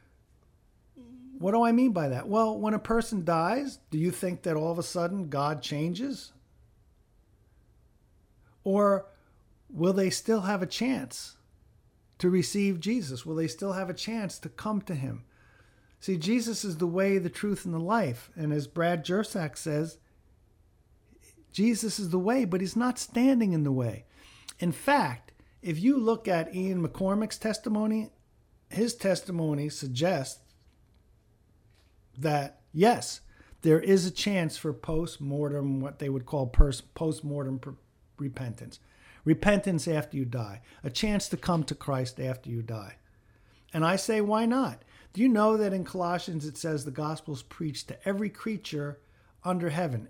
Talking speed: 155 wpm